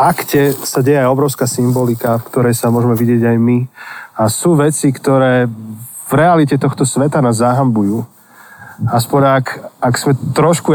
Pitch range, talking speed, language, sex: 115-135 Hz, 155 wpm, Slovak, male